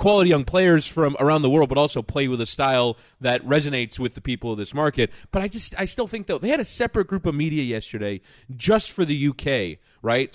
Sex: male